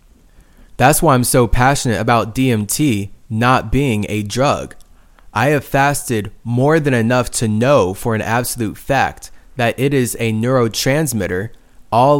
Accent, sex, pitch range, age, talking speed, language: American, male, 110-135 Hz, 20-39, 145 wpm, English